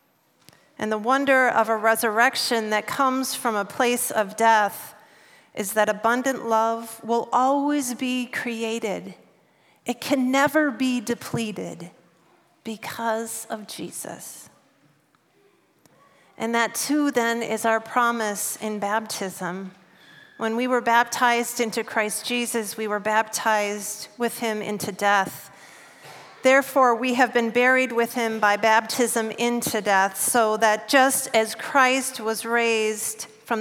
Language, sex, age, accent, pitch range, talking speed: English, female, 40-59, American, 210-245 Hz, 125 wpm